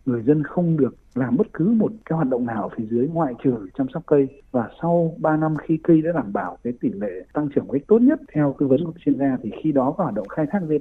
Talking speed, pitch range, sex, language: 285 wpm, 125-165 Hz, male, Vietnamese